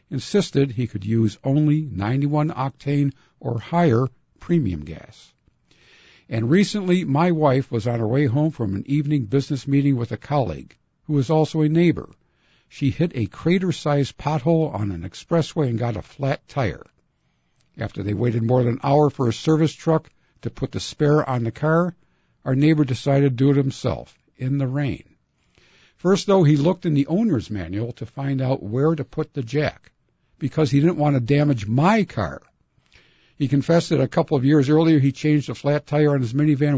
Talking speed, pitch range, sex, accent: 185 wpm, 120-155 Hz, male, American